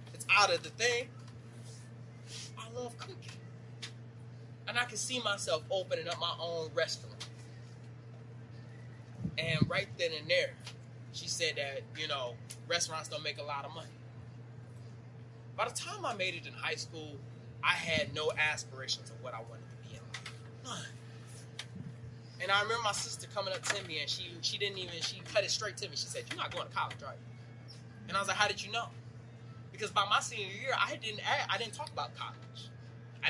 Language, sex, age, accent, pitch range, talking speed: English, male, 20-39, American, 120-160 Hz, 190 wpm